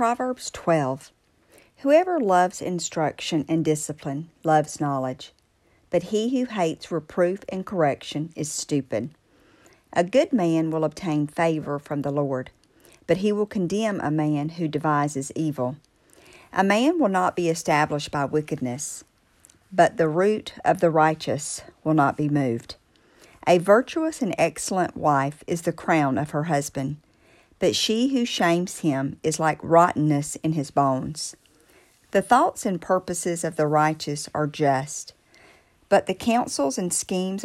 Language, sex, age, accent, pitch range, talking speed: English, female, 50-69, American, 150-185 Hz, 145 wpm